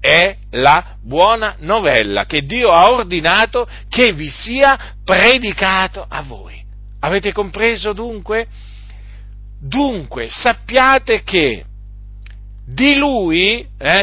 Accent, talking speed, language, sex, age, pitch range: native, 100 wpm, Italian, male, 50-69, 140-235 Hz